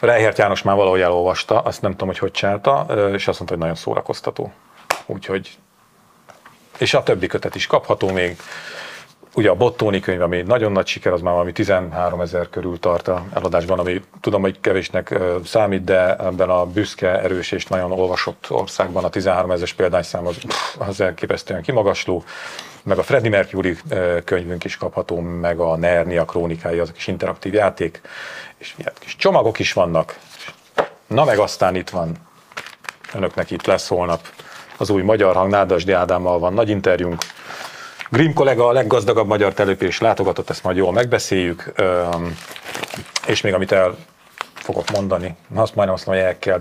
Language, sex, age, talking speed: Hungarian, male, 40-59, 160 wpm